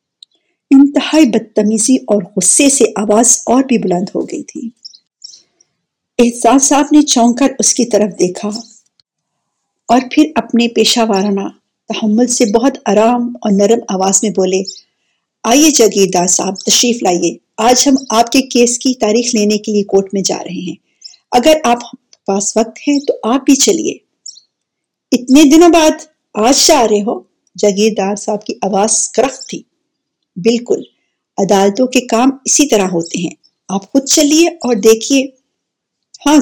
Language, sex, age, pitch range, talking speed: Urdu, female, 50-69, 210-265 Hz, 150 wpm